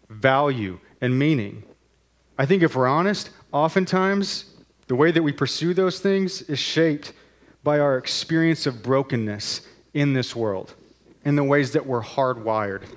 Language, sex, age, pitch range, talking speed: English, male, 30-49, 110-145 Hz, 150 wpm